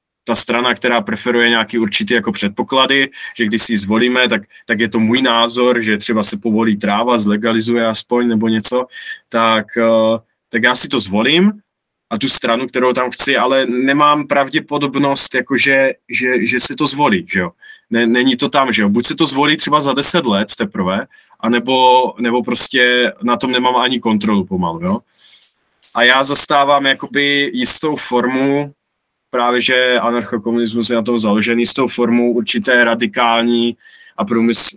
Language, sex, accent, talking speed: Czech, male, native, 165 wpm